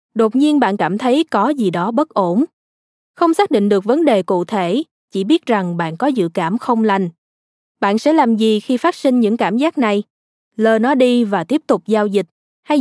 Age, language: 20-39, Vietnamese